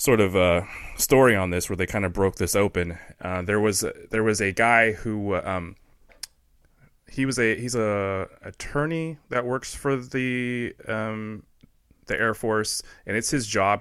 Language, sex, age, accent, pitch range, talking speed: English, male, 30-49, American, 90-110 Hz, 175 wpm